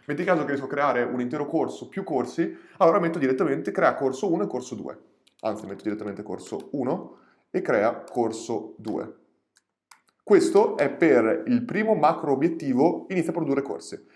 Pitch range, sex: 135-220 Hz, male